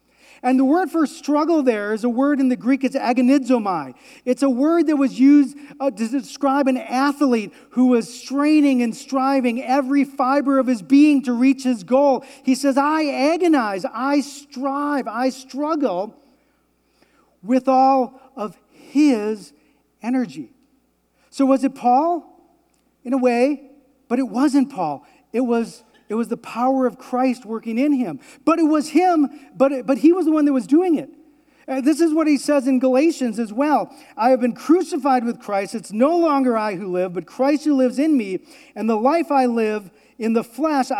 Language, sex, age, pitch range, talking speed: English, male, 40-59, 240-285 Hz, 180 wpm